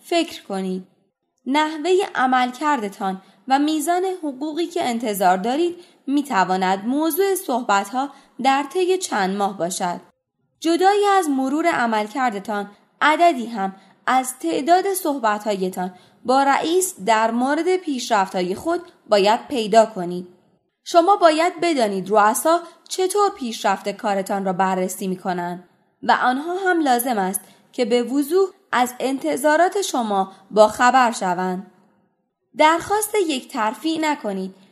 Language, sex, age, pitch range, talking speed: Persian, female, 20-39, 195-310 Hz, 110 wpm